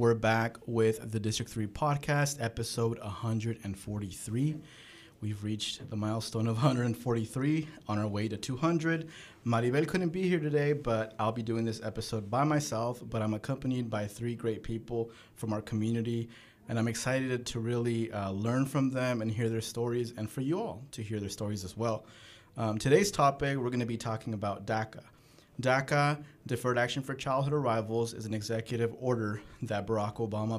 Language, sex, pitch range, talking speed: English, male, 110-130 Hz, 175 wpm